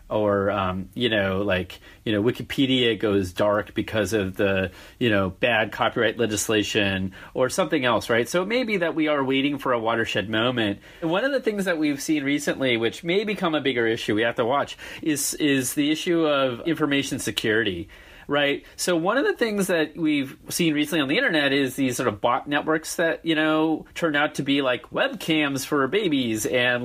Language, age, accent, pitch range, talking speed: English, 30-49, American, 115-155 Hz, 205 wpm